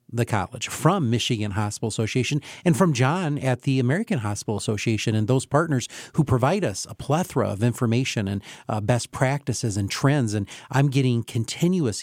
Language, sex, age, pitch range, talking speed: English, male, 40-59, 115-140 Hz, 170 wpm